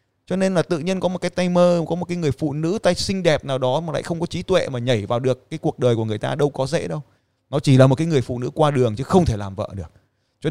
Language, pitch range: Vietnamese, 110-155 Hz